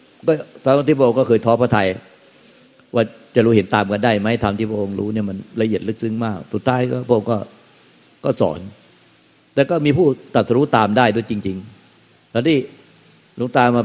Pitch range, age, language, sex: 105-125 Hz, 60-79, Thai, male